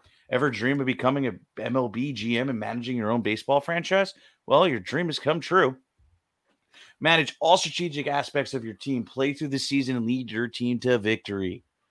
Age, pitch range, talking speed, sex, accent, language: 30-49, 115-150 Hz, 180 wpm, male, American, English